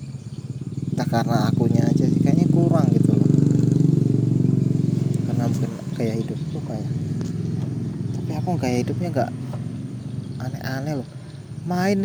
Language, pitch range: Indonesian, 120-150 Hz